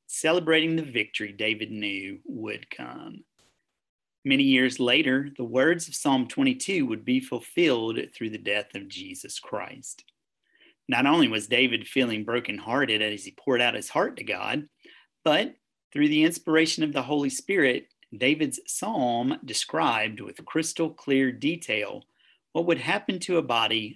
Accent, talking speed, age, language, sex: American, 150 wpm, 40-59, English, male